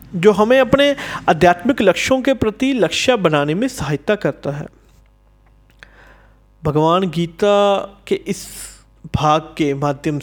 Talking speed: 115 wpm